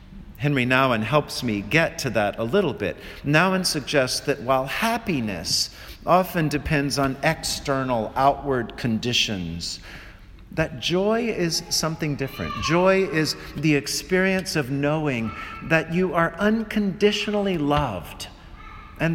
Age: 50-69